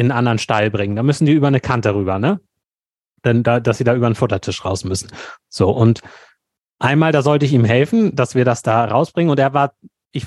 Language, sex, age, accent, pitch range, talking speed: German, male, 30-49, German, 115-150 Hz, 235 wpm